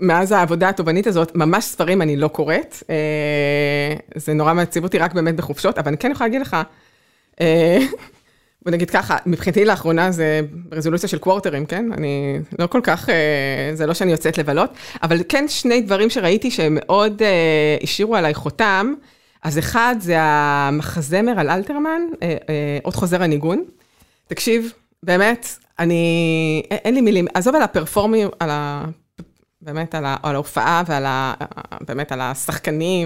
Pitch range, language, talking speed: 160-220 Hz, Hebrew, 145 wpm